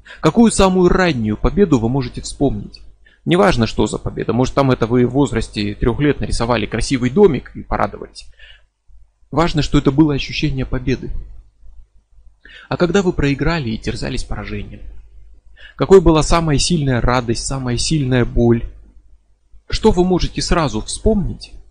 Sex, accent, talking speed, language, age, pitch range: male, native, 140 wpm, Russian, 30-49, 115-160 Hz